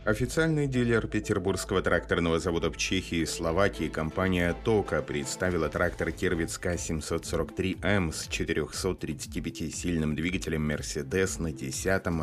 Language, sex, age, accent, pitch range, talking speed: Russian, male, 30-49, native, 75-95 Hz, 100 wpm